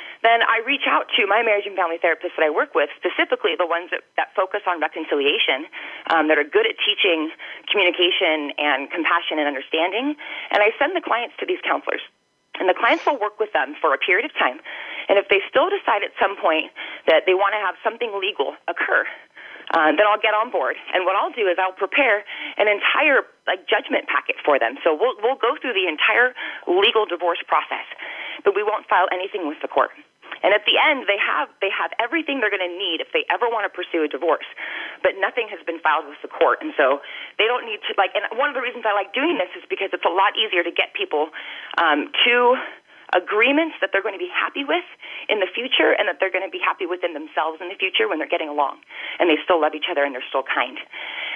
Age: 30-49